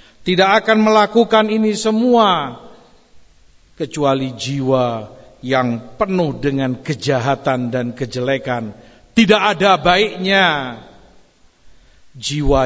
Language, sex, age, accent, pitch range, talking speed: Indonesian, male, 50-69, native, 125-175 Hz, 80 wpm